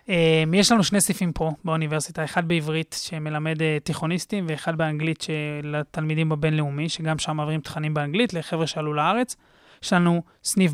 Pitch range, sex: 155-180 Hz, male